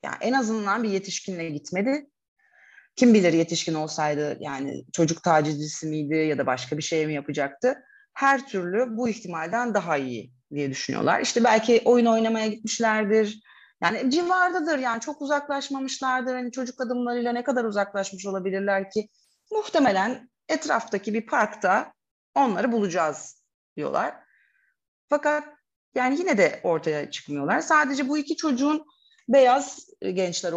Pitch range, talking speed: 165-265 Hz, 130 wpm